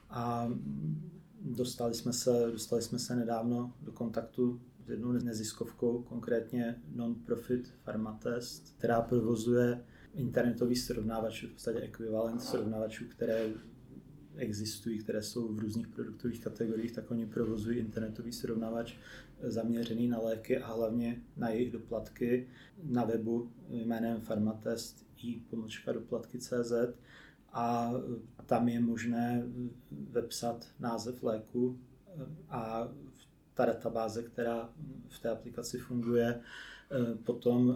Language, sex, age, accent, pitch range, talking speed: Czech, male, 30-49, native, 115-120 Hz, 110 wpm